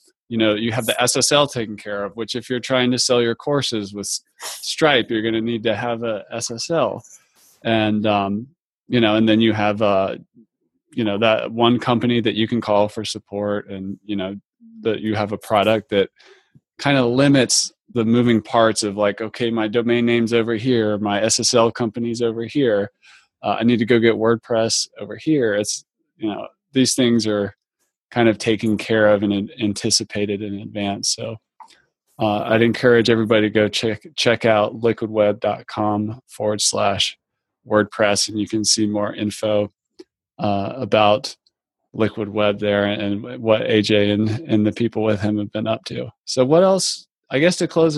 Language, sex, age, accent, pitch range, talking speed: English, male, 20-39, American, 105-125 Hz, 180 wpm